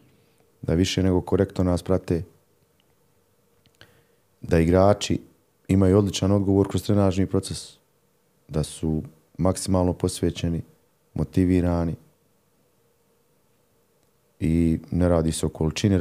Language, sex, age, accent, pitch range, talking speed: Croatian, male, 30-49, native, 80-90 Hz, 95 wpm